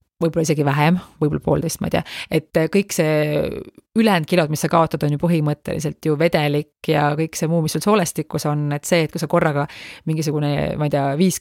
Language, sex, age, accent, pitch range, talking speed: English, female, 30-49, Finnish, 150-170 Hz, 205 wpm